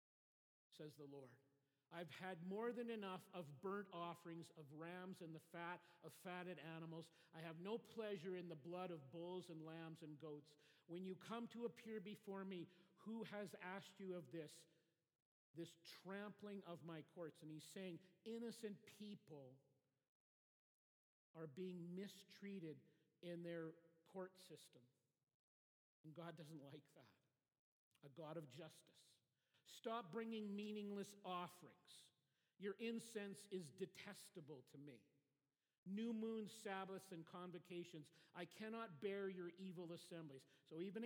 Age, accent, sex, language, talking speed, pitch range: 50-69, American, male, English, 135 wpm, 155-195 Hz